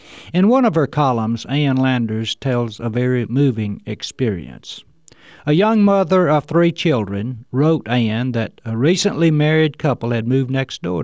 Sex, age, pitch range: male, 60-79, 115-155 Hz